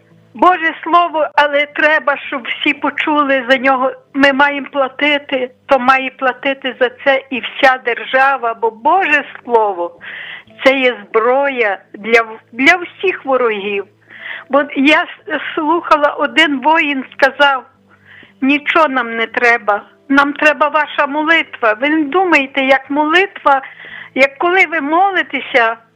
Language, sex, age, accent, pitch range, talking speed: Ukrainian, female, 50-69, native, 255-310 Hz, 125 wpm